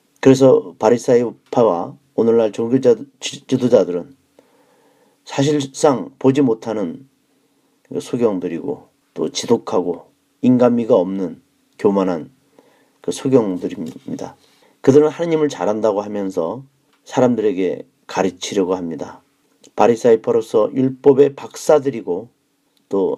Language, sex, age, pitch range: Korean, male, 40-59, 105-140 Hz